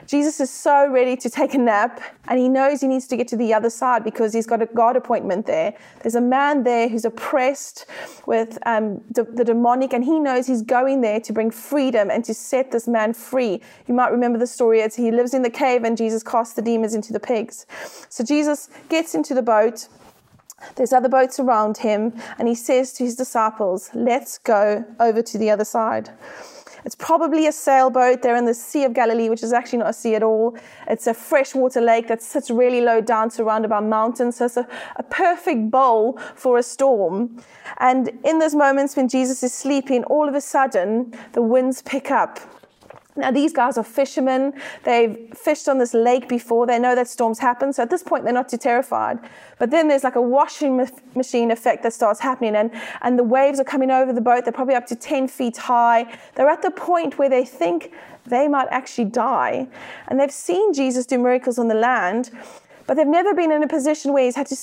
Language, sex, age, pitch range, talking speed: English, female, 30-49, 230-275 Hz, 215 wpm